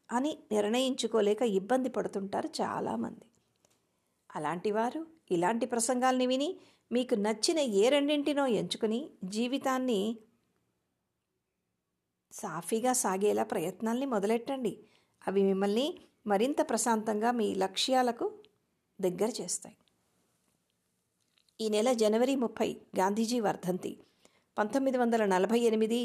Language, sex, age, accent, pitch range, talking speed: Telugu, female, 50-69, native, 210-270 Hz, 80 wpm